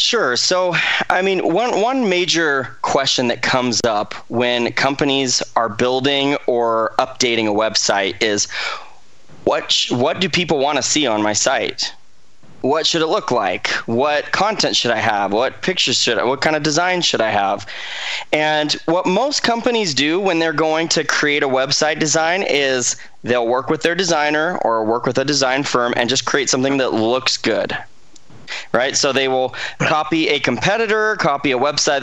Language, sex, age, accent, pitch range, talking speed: English, male, 20-39, American, 125-160 Hz, 175 wpm